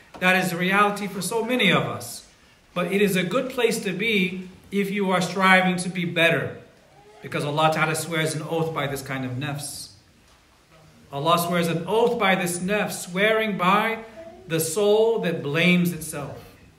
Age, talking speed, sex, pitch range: 40-59, 175 wpm, male, 155-195 Hz